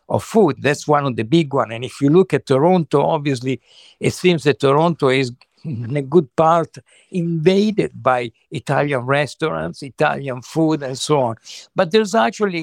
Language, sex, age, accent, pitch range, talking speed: English, male, 60-79, Italian, 135-180 Hz, 170 wpm